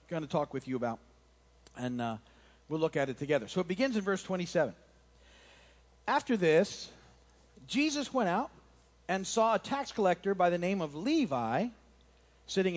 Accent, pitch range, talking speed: American, 130-205 Hz, 165 wpm